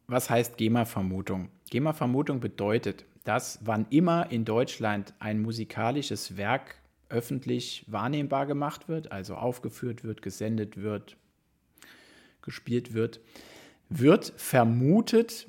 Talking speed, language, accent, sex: 100 wpm, German, German, male